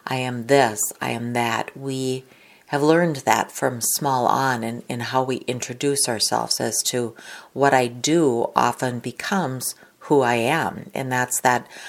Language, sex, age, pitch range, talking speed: English, female, 40-59, 120-140 Hz, 160 wpm